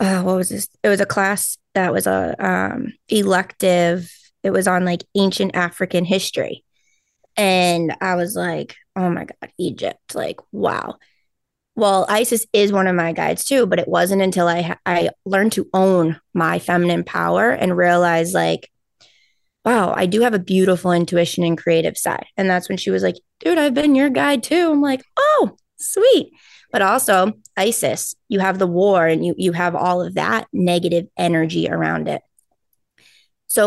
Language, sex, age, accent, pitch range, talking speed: English, female, 20-39, American, 175-205 Hz, 175 wpm